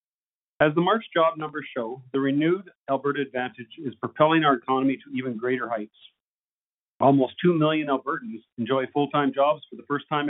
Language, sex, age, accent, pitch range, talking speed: English, male, 40-59, American, 125-150 Hz, 170 wpm